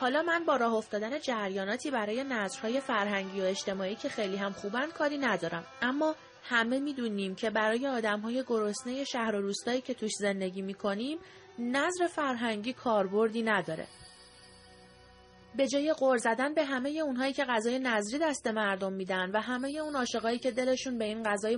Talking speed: 165 wpm